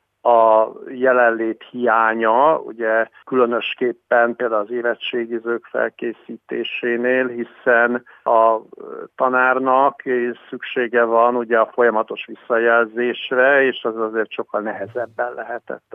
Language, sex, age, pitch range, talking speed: Hungarian, male, 50-69, 115-135 Hz, 90 wpm